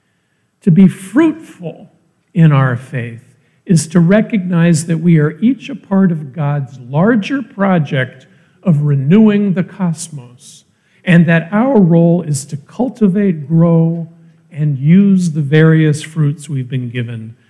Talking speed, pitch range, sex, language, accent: 135 wpm, 140-190 Hz, male, English, American